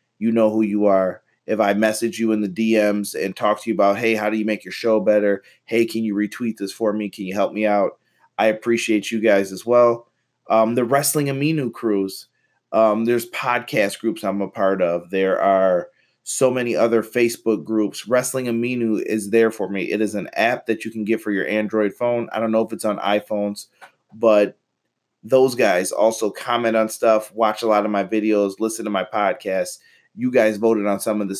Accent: American